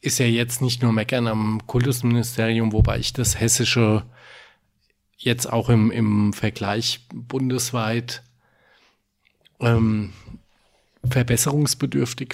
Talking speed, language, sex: 95 wpm, German, male